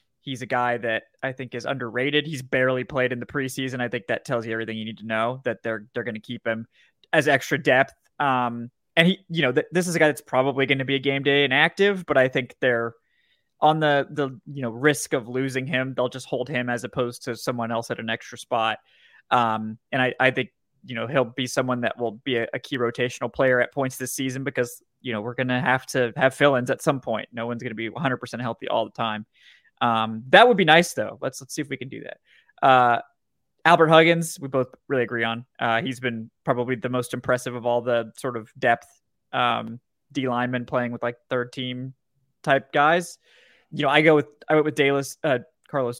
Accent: American